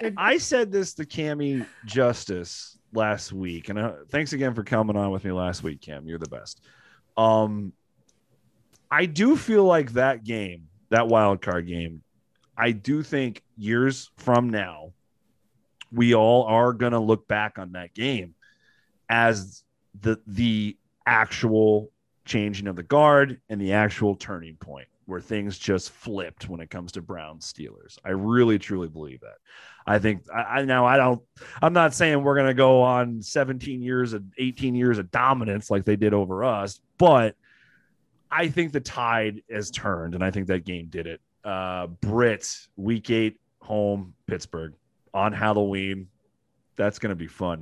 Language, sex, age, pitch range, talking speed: English, male, 30-49, 95-125 Hz, 165 wpm